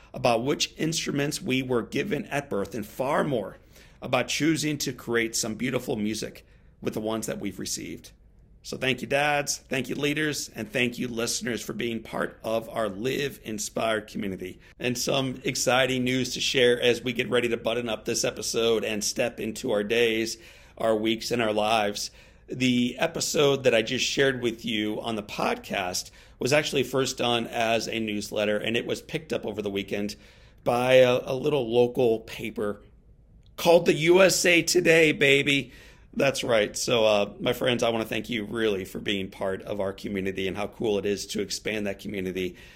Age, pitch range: 40-59, 100-125 Hz